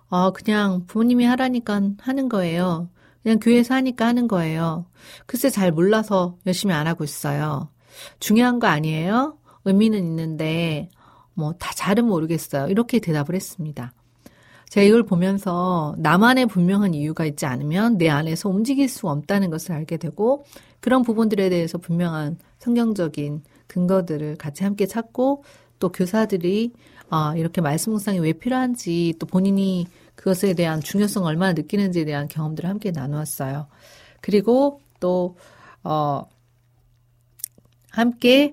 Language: Korean